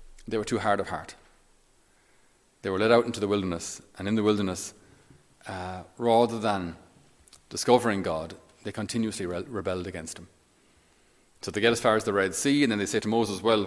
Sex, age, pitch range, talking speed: male, 30-49, 95-110 Hz, 190 wpm